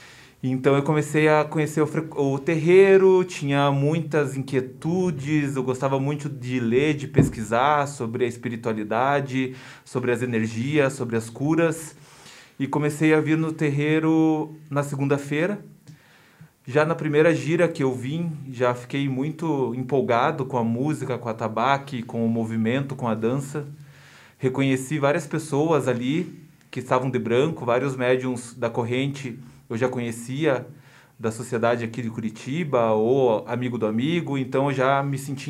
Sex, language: male, Portuguese